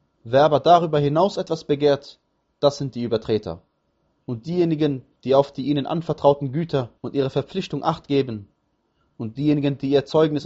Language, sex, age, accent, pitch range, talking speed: German, male, 20-39, German, 125-160 Hz, 160 wpm